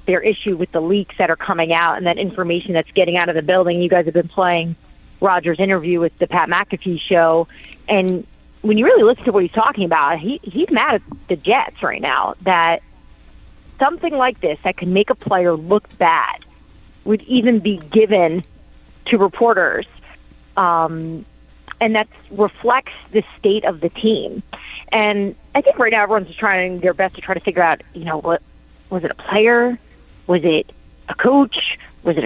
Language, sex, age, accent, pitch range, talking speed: English, female, 30-49, American, 170-220 Hz, 190 wpm